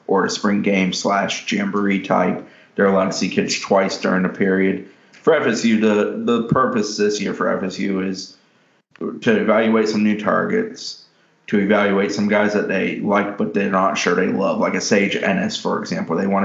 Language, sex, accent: English, male, American